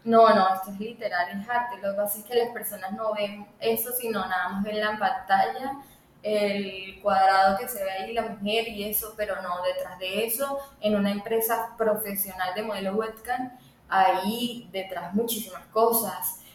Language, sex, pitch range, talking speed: Spanish, female, 195-225 Hz, 180 wpm